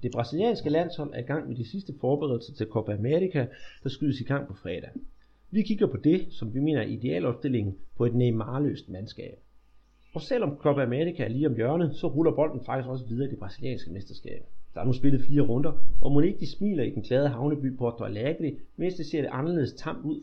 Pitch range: 120-150 Hz